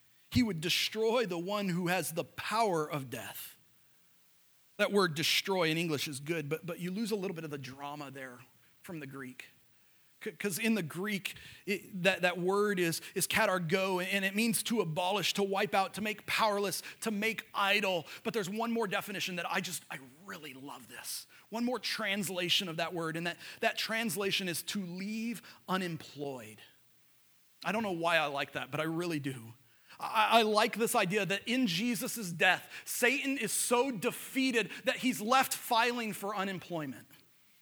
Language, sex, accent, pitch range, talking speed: English, male, American, 170-255 Hz, 180 wpm